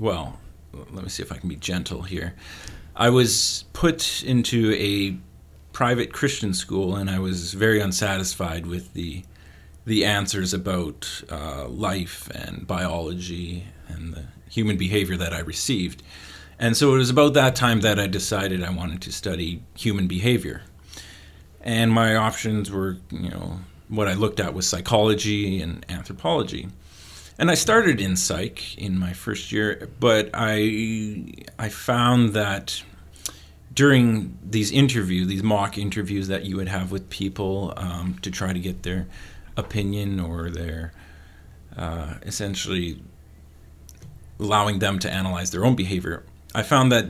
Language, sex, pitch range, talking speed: English, male, 85-105 Hz, 150 wpm